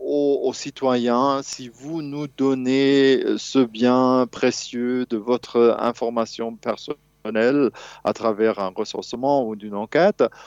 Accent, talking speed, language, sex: French, 115 wpm, French, male